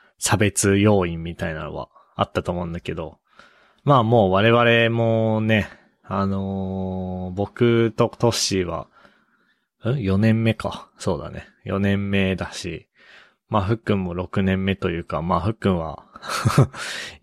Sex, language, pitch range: male, Japanese, 90-115 Hz